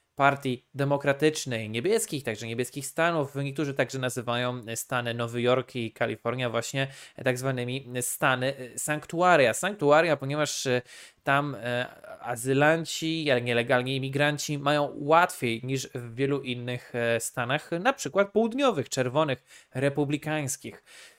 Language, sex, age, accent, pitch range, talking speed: Polish, male, 20-39, native, 125-155 Hz, 110 wpm